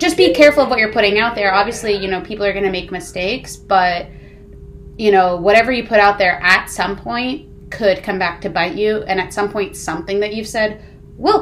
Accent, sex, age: American, female, 20-39